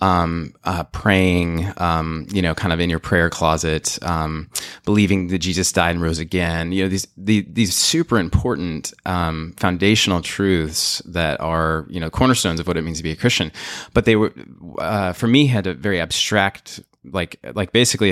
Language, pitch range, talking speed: English, 80-105 Hz, 185 wpm